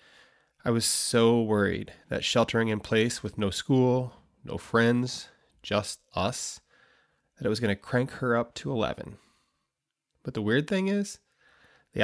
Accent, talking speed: American, 155 wpm